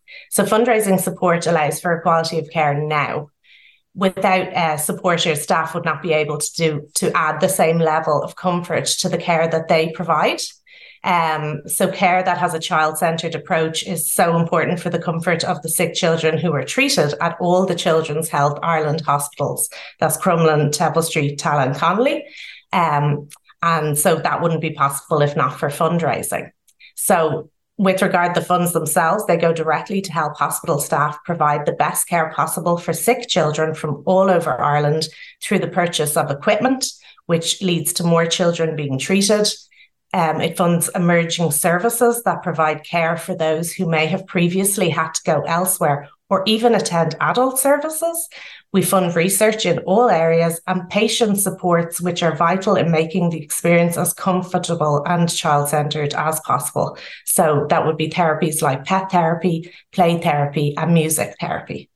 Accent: Irish